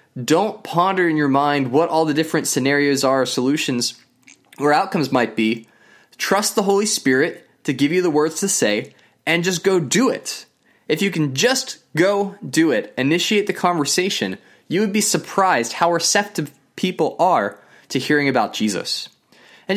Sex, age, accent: male, 20-39, American